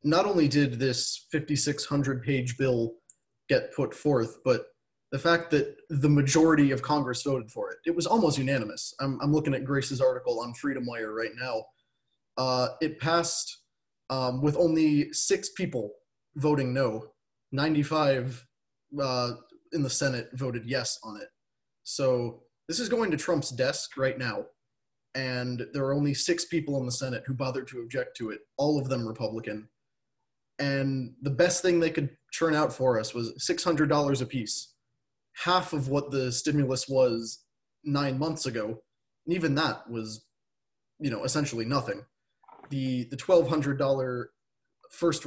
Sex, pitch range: male, 125-150 Hz